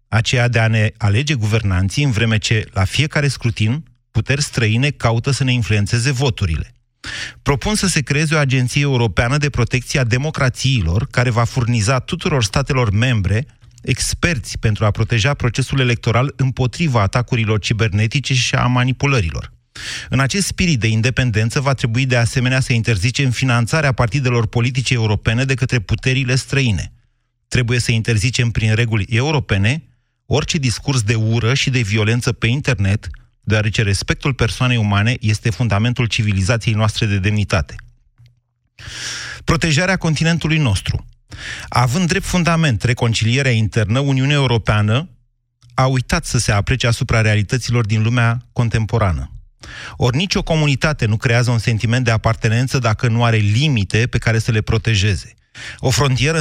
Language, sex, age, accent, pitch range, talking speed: Romanian, male, 30-49, native, 115-135 Hz, 140 wpm